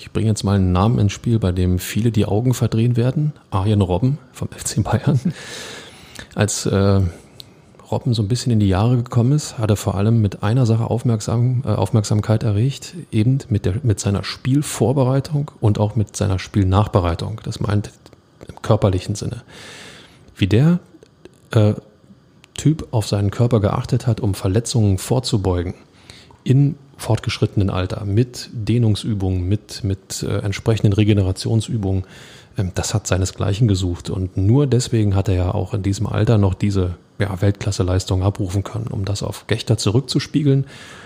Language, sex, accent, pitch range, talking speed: German, male, German, 100-120 Hz, 155 wpm